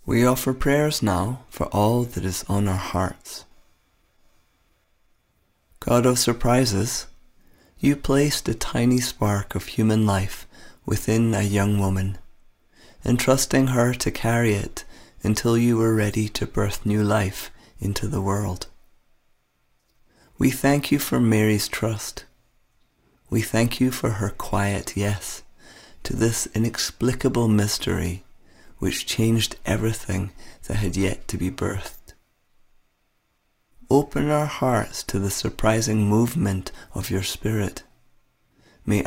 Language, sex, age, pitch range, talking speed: English, male, 30-49, 95-115 Hz, 120 wpm